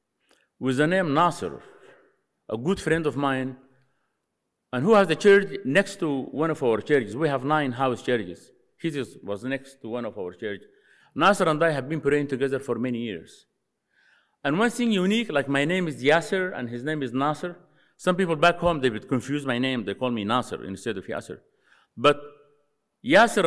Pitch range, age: 130-195 Hz, 50-69